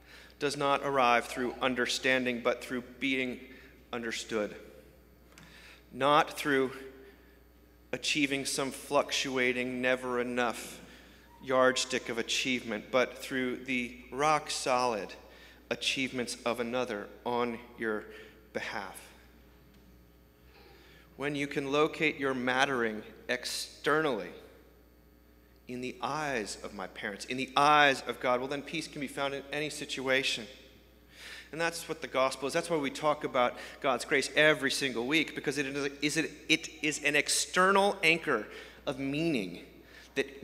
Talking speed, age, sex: 125 wpm, 40-59, male